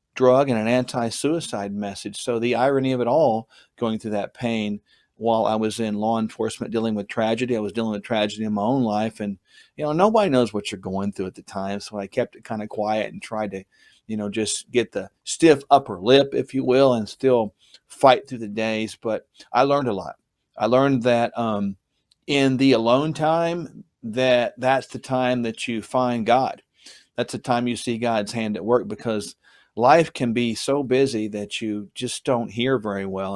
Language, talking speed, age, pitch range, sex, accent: English, 205 wpm, 40-59, 105-130 Hz, male, American